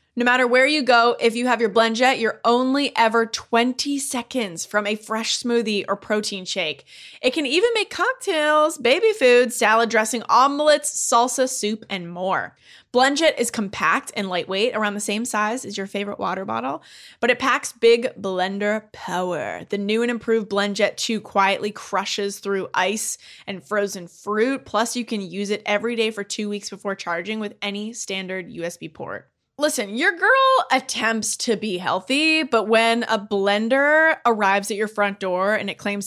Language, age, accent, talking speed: English, 20-39, American, 175 wpm